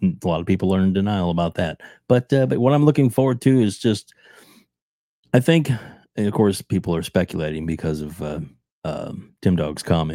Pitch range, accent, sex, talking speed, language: 80-100 Hz, American, male, 205 wpm, English